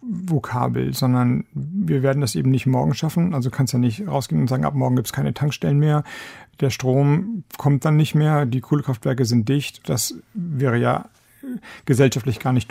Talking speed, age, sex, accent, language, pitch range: 190 wpm, 50-69, male, German, German, 130-150 Hz